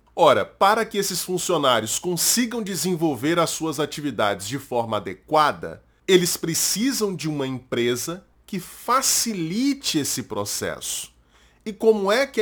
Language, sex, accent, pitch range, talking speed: Portuguese, male, Brazilian, 140-195 Hz, 125 wpm